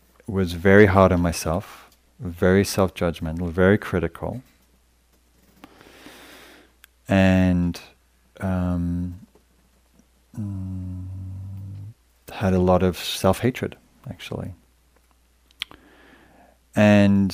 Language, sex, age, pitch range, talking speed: English, male, 30-49, 85-110 Hz, 60 wpm